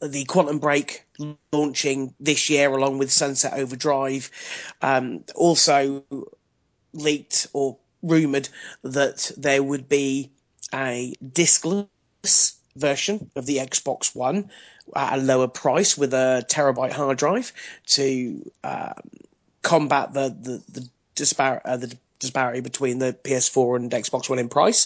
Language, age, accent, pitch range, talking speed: English, 30-49, British, 130-150 Hz, 130 wpm